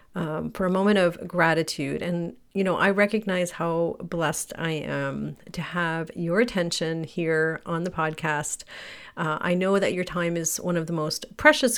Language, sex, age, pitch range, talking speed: English, female, 40-59, 155-195 Hz, 180 wpm